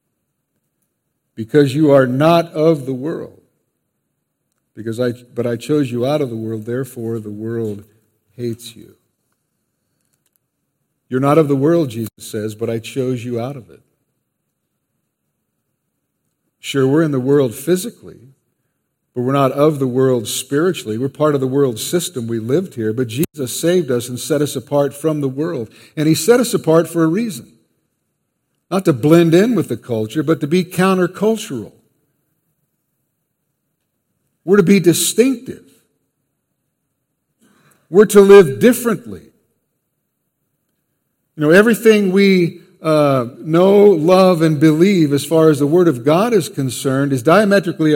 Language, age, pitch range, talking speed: English, 50-69, 130-180 Hz, 145 wpm